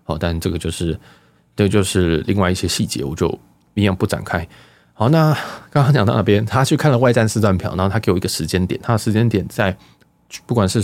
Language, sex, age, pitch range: Chinese, male, 20-39, 90-115 Hz